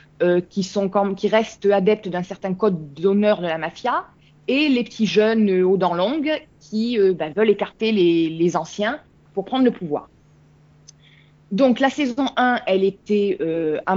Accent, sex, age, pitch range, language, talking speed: French, female, 20-39, 185-250 Hz, French, 180 wpm